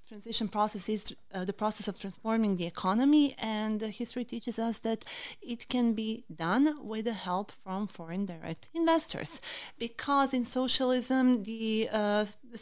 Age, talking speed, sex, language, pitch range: 30-49, 150 wpm, female, Hungarian, 205-250 Hz